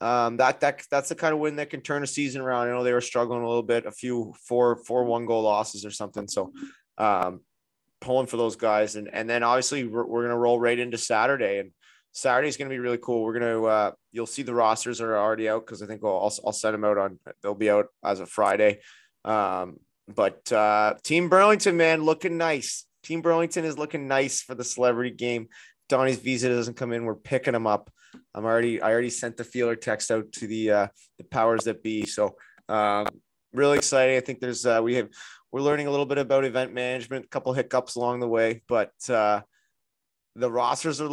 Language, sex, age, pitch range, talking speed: English, male, 20-39, 110-135 Hz, 225 wpm